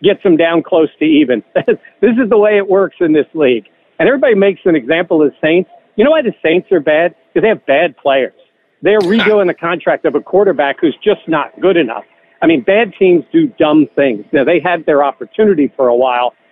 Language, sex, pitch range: English, male, 155-215 Hz